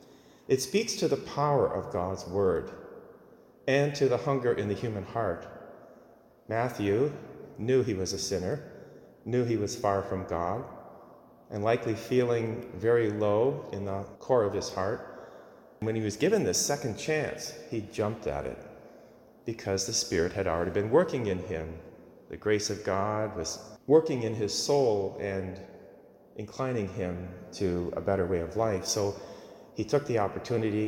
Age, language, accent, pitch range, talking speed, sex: 30-49, English, American, 95-120 Hz, 160 wpm, male